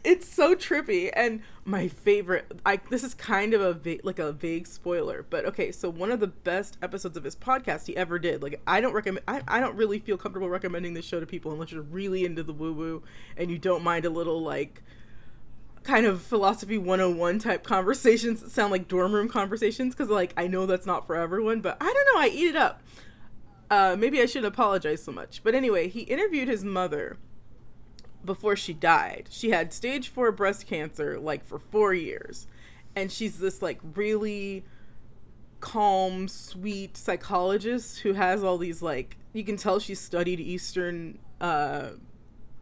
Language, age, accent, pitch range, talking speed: English, 20-39, American, 170-220 Hz, 185 wpm